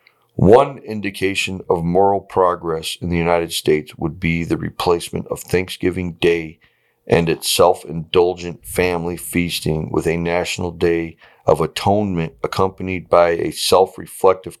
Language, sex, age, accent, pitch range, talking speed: English, male, 40-59, American, 85-95 Hz, 125 wpm